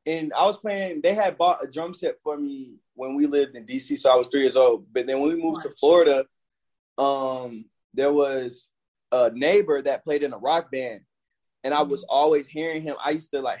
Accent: American